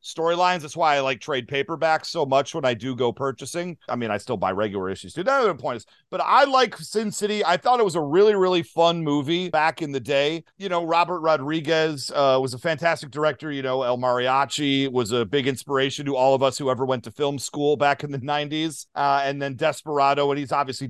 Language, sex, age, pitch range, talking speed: English, male, 40-59, 140-175 Hz, 235 wpm